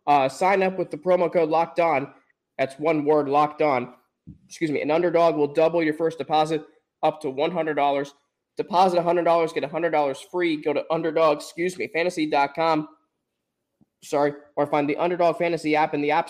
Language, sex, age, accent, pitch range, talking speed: English, male, 20-39, American, 150-175 Hz, 195 wpm